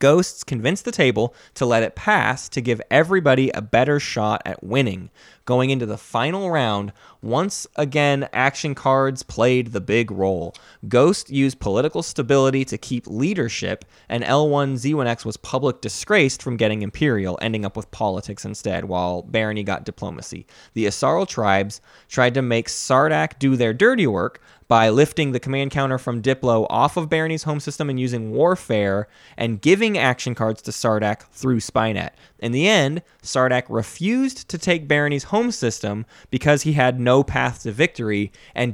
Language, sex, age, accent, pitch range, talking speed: English, male, 20-39, American, 105-140 Hz, 165 wpm